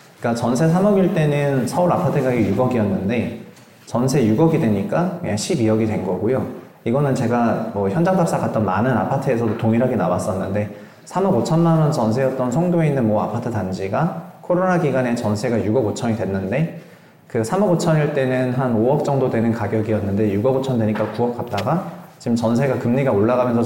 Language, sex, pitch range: Korean, male, 110-150 Hz